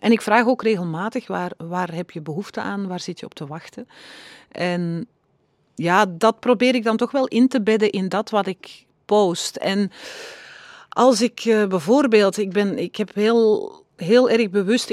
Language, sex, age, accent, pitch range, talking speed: Dutch, female, 40-59, Dutch, 170-220 Hz, 180 wpm